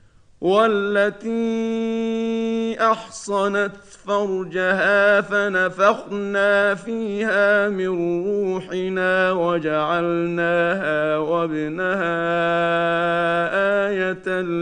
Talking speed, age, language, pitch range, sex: 40 wpm, 50-69, Arabic, 170-205 Hz, male